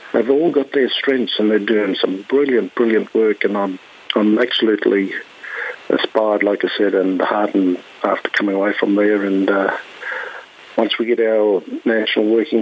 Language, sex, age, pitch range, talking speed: English, male, 50-69, 105-120 Hz, 165 wpm